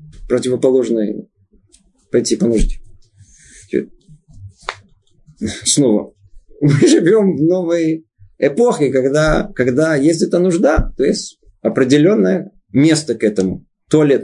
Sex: male